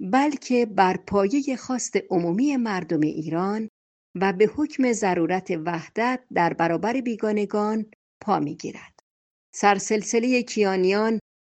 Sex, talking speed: female, 105 wpm